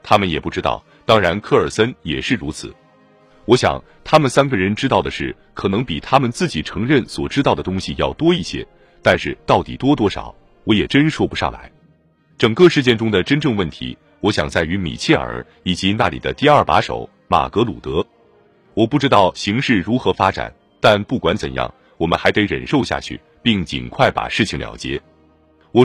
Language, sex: Chinese, male